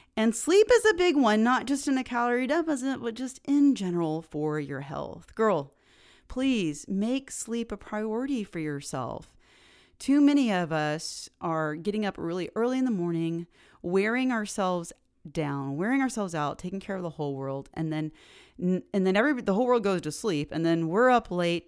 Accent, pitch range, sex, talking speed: American, 165-250 Hz, female, 185 wpm